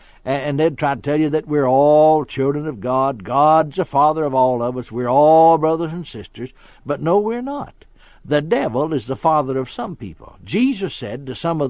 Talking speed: 210 wpm